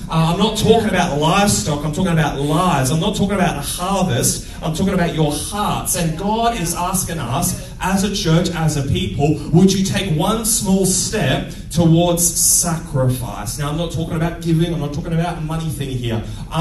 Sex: male